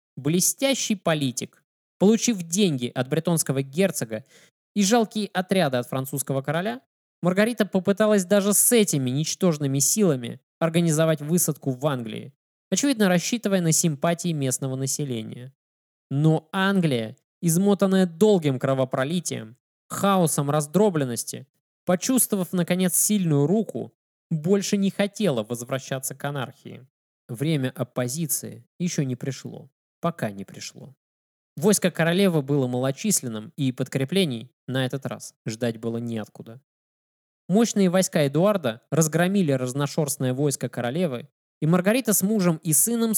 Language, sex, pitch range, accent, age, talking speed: Russian, male, 135-190 Hz, native, 20-39, 110 wpm